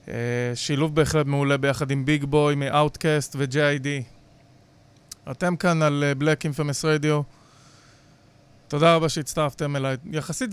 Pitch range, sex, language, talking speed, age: 135-155 Hz, male, English, 120 wpm, 30-49